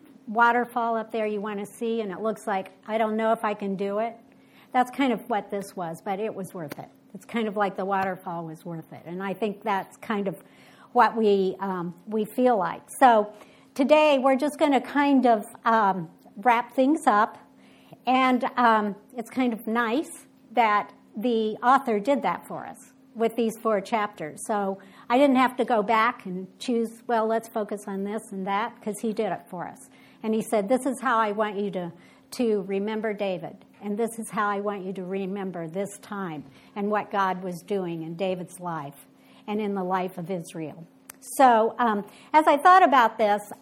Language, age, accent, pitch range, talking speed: English, 60-79, American, 195-250 Hz, 200 wpm